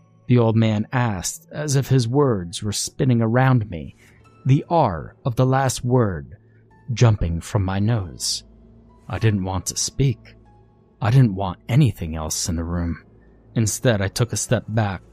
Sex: male